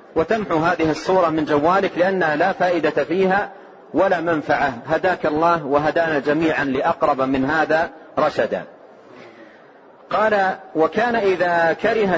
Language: Arabic